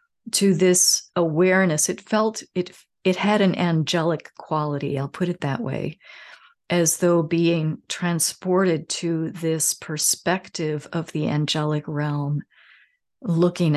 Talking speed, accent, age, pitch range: 120 wpm, American, 50-69, 155-185 Hz